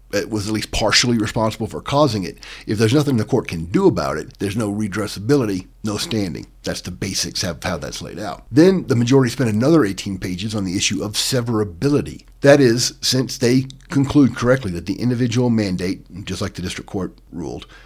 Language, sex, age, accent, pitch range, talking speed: English, male, 50-69, American, 100-130 Hz, 195 wpm